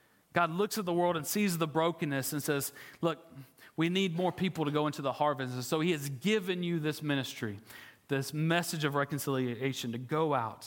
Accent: American